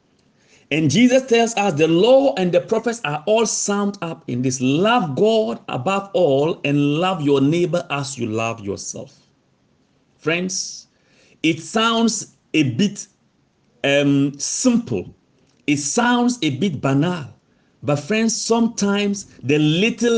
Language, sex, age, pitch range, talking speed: English, male, 50-69, 140-220 Hz, 130 wpm